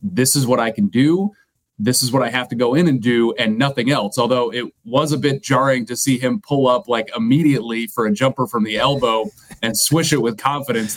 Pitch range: 110-135 Hz